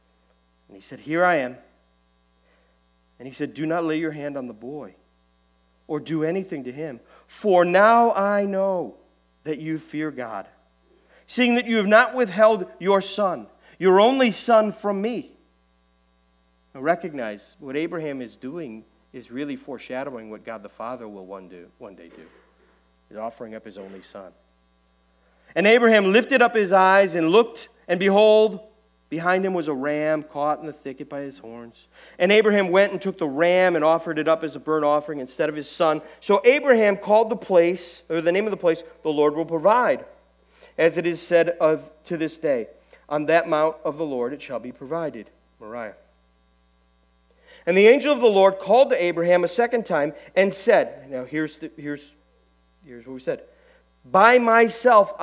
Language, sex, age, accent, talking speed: English, male, 40-59, American, 180 wpm